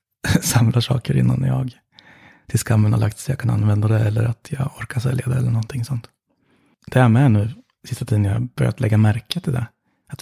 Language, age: Swedish, 30-49